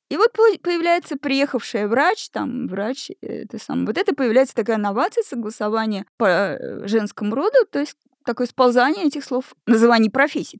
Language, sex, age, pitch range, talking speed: Russian, female, 20-39, 200-275 Hz, 145 wpm